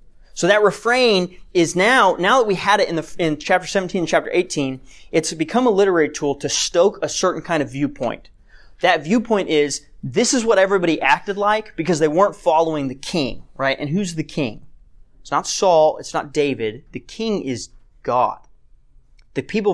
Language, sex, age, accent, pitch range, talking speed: English, male, 30-49, American, 145-200 Hz, 190 wpm